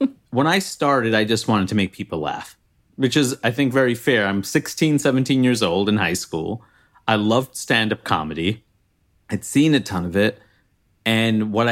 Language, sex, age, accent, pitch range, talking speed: English, male, 30-49, American, 100-130 Hz, 185 wpm